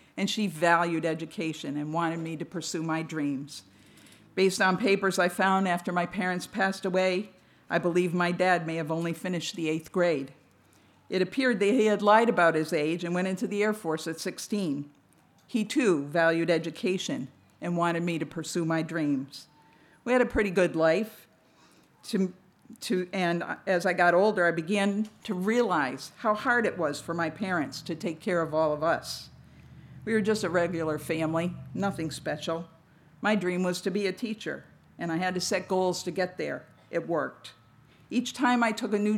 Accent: American